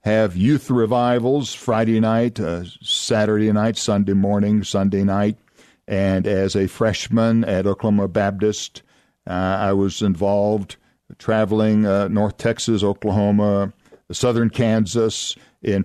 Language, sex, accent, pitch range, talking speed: English, male, American, 100-120 Hz, 115 wpm